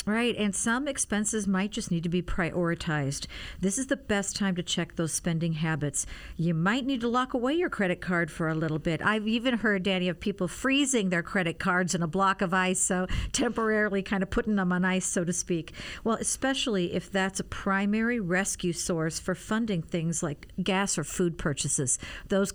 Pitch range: 175-215 Hz